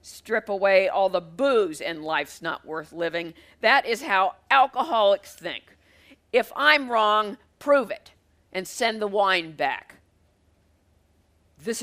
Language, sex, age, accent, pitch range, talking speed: English, female, 50-69, American, 145-230 Hz, 130 wpm